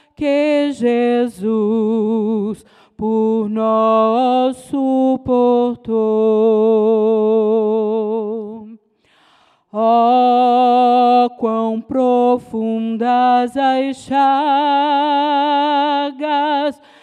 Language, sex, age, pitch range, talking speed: Portuguese, female, 40-59, 220-285 Hz, 35 wpm